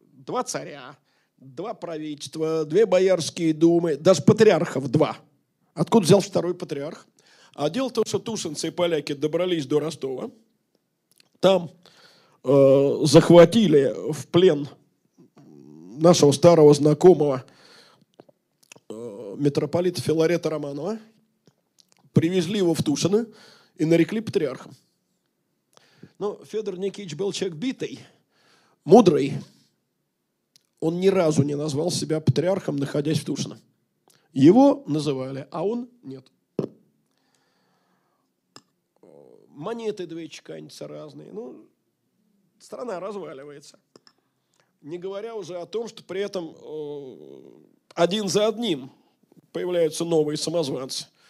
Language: Russian